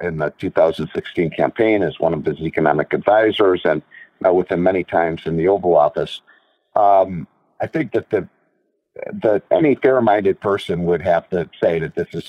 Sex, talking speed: male, 175 wpm